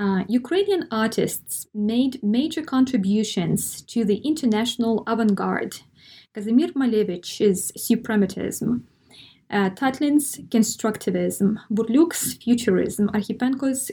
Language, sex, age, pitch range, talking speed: English, female, 20-39, 200-250 Hz, 80 wpm